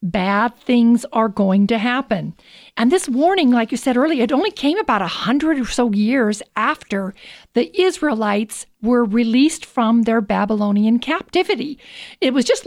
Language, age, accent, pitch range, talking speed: English, 50-69, American, 210-270 Hz, 160 wpm